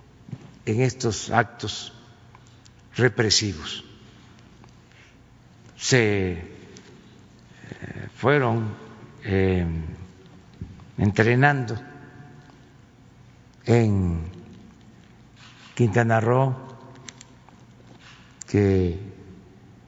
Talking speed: 35 wpm